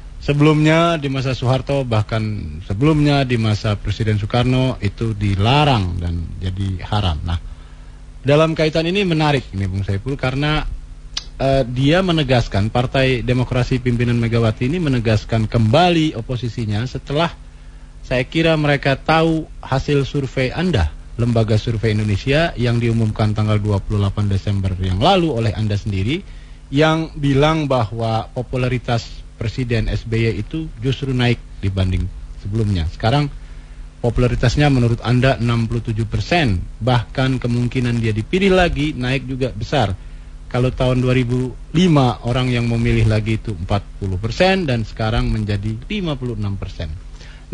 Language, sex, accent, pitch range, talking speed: Indonesian, male, native, 105-145 Hz, 115 wpm